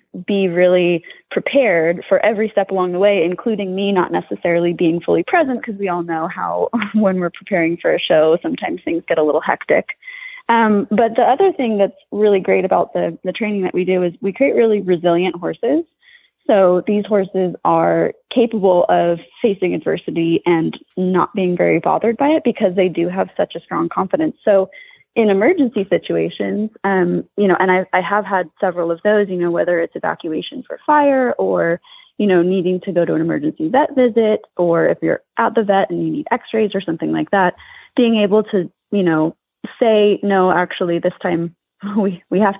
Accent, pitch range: American, 175-230 Hz